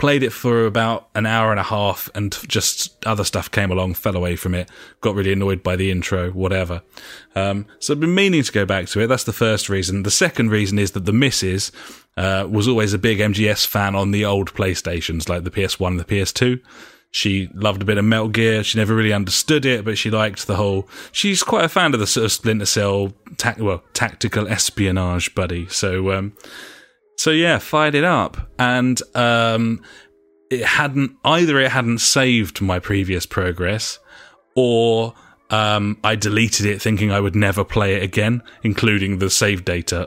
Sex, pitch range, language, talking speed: male, 95-115 Hz, English, 195 wpm